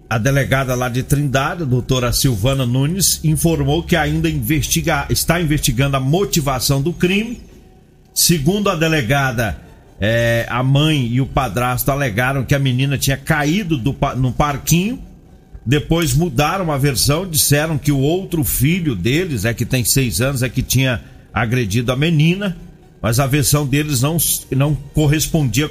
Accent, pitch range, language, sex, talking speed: Brazilian, 125-155 Hz, Portuguese, male, 150 wpm